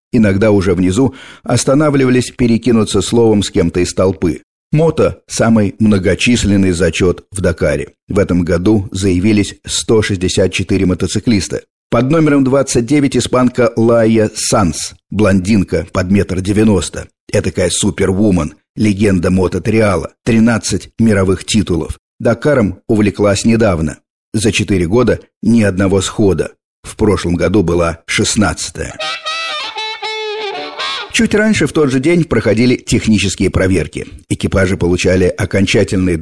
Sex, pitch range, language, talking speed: male, 95-115 Hz, Russian, 110 wpm